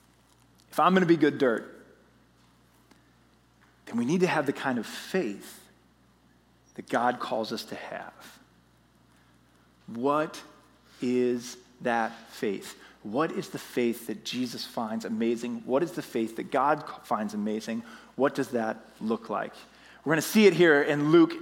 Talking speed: 155 wpm